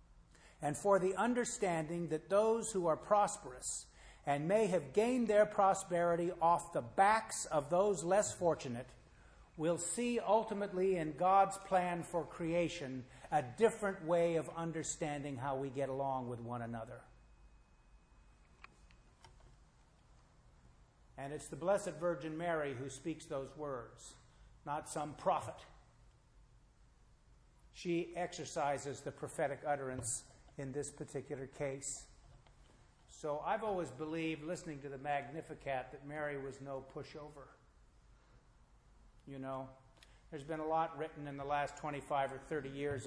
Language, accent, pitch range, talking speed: English, American, 130-165 Hz, 125 wpm